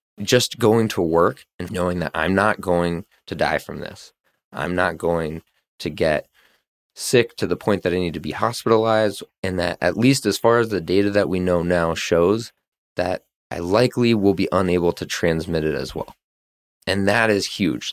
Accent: American